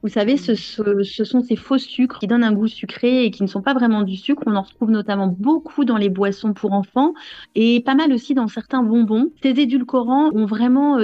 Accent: French